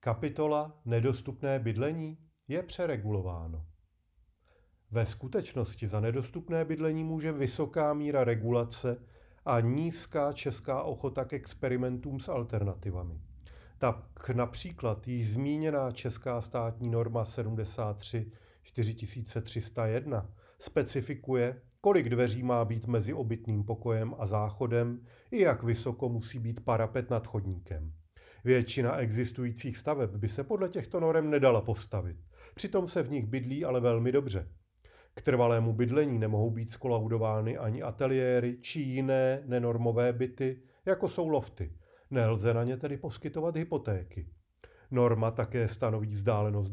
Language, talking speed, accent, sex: Czech, 115 wpm, native, male